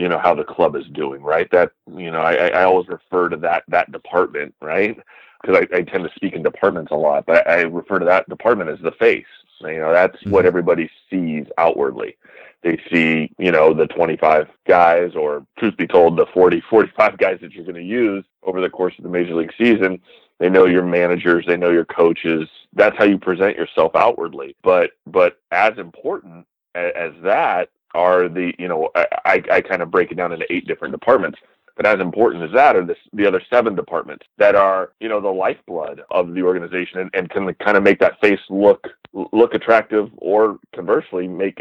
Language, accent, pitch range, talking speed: English, American, 90-110 Hz, 210 wpm